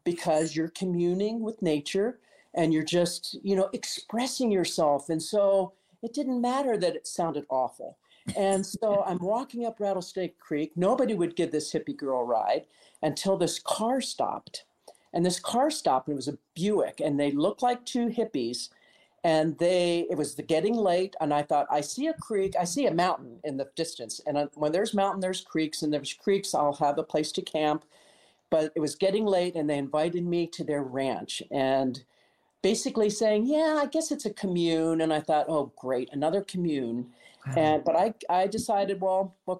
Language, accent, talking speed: English, American, 190 wpm